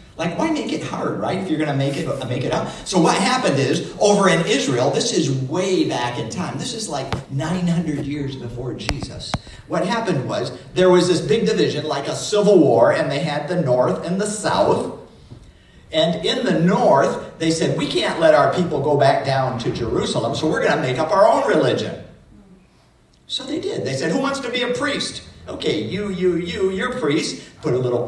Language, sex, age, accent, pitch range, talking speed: English, male, 50-69, American, 140-195 Hz, 215 wpm